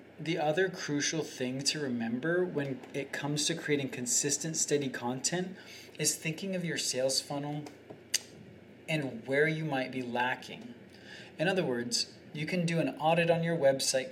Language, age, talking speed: English, 20-39, 155 wpm